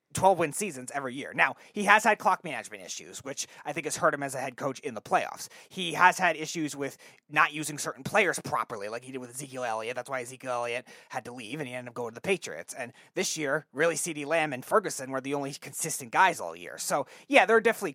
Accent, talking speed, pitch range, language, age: American, 250 wpm, 130-170 Hz, English, 30-49